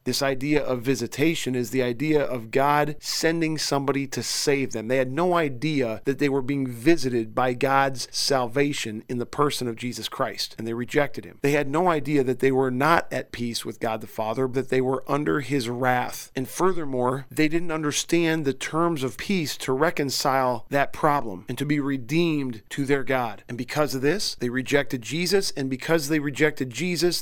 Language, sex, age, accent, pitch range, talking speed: English, male, 40-59, American, 130-150 Hz, 195 wpm